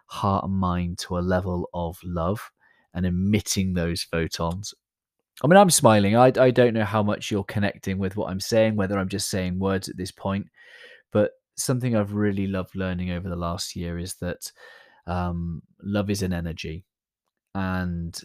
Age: 20-39